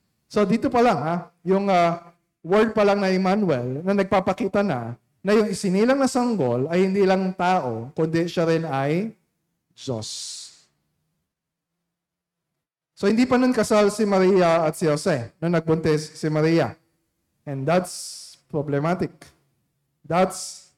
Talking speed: 135 wpm